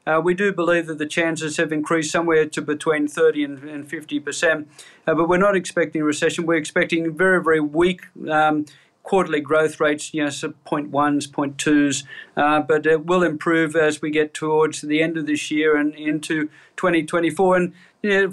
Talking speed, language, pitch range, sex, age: 175 wpm, English, 155-180 Hz, male, 40-59